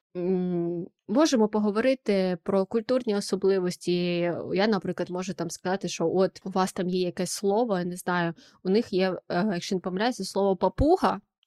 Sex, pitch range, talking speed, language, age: female, 175-215 Hz, 150 wpm, Ukrainian, 20-39